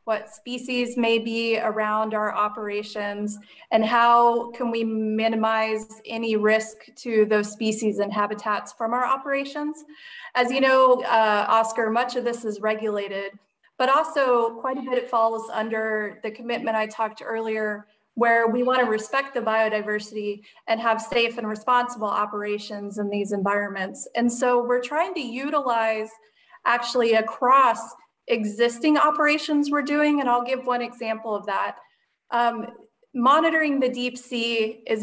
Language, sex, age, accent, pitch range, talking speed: English, female, 30-49, American, 215-250 Hz, 145 wpm